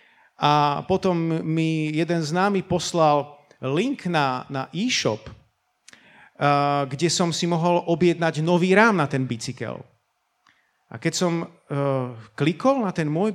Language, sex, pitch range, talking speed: Slovak, male, 145-200 Hz, 135 wpm